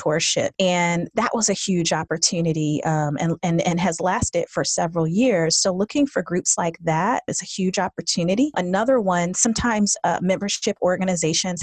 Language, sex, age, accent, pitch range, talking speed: English, female, 30-49, American, 165-190 Hz, 165 wpm